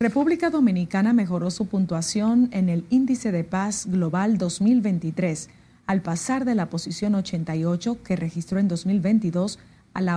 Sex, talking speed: female, 140 wpm